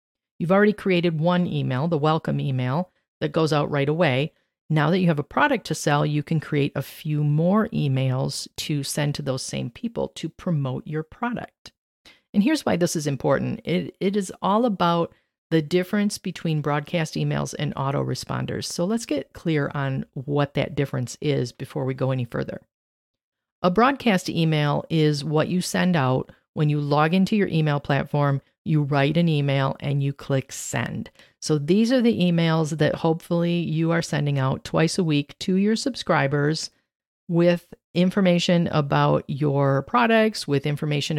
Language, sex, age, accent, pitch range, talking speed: English, female, 40-59, American, 145-180 Hz, 170 wpm